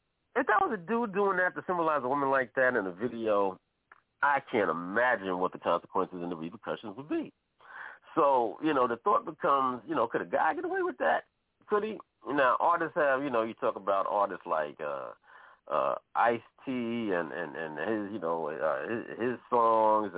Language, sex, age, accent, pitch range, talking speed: English, male, 40-59, American, 90-150 Hz, 195 wpm